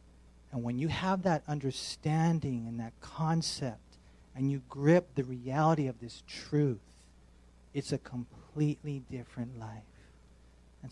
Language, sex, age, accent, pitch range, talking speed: English, male, 40-59, American, 120-160 Hz, 125 wpm